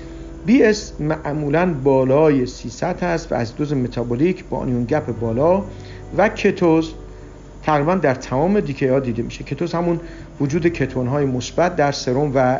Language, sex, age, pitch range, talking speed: Persian, male, 50-69, 125-165 Hz, 155 wpm